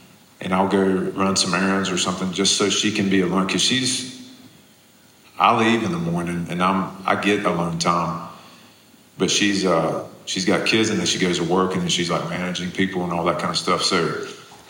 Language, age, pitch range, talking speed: Ukrainian, 40-59, 90-110 Hz, 215 wpm